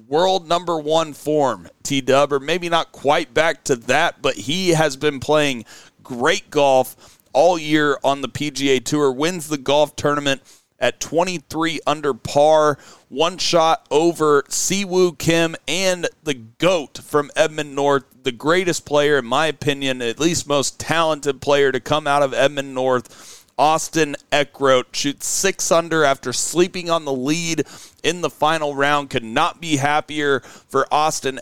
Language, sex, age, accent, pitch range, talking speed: English, male, 40-59, American, 135-160 Hz, 155 wpm